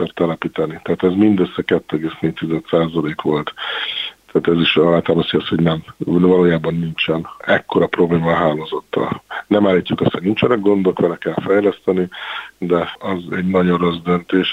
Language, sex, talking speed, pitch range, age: Hungarian, male, 140 wpm, 85-95 Hz, 50-69